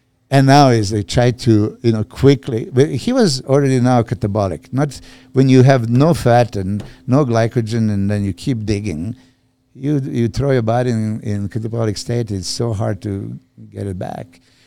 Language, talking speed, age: English, 185 wpm, 60-79